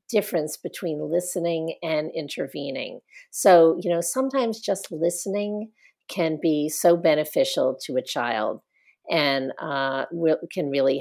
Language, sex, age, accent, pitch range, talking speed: English, female, 50-69, American, 150-190 Hz, 125 wpm